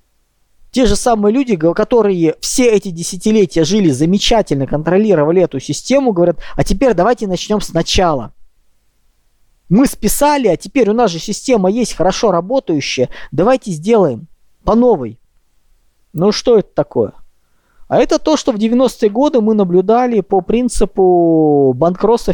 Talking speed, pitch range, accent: 135 wpm, 145-215 Hz, native